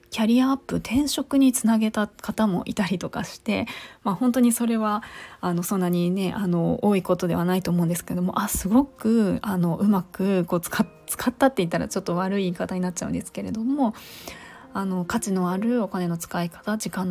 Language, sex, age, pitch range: Japanese, female, 20-39, 180-230 Hz